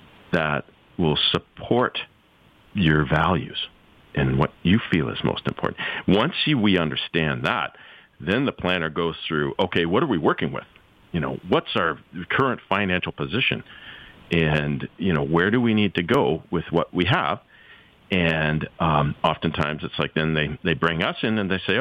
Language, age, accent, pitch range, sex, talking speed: English, 50-69, American, 80-100 Hz, male, 170 wpm